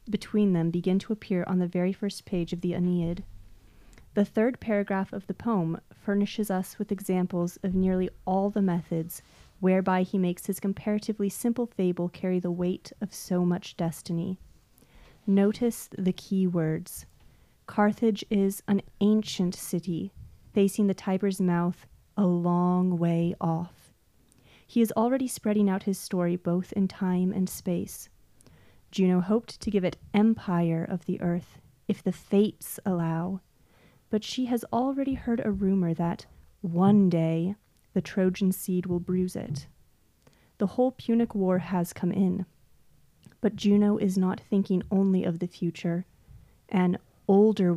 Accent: American